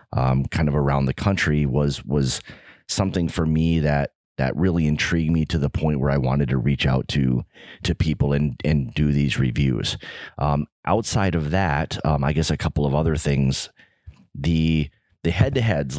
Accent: American